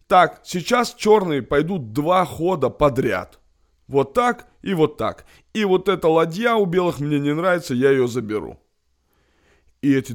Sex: male